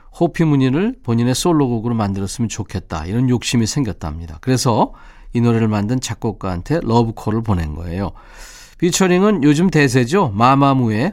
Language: Korean